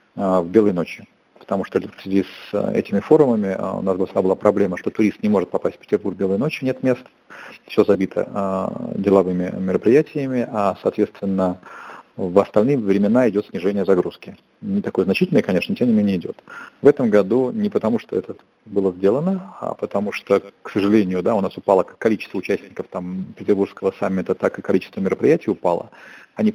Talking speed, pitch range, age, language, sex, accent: 165 wpm, 95-115 Hz, 40-59, Russian, male, native